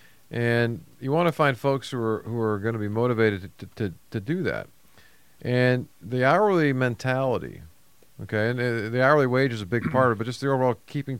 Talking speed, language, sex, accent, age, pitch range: 215 wpm, English, male, American, 40-59, 100-130 Hz